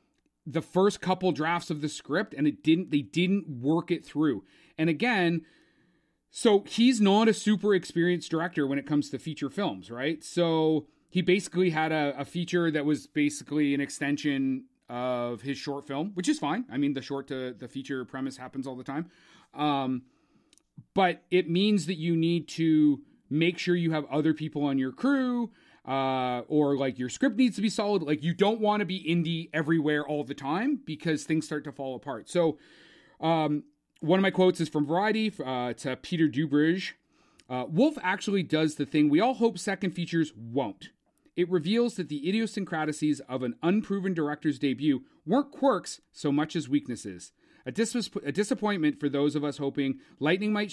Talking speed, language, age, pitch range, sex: 185 wpm, English, 30-49, 145-190 Hz, male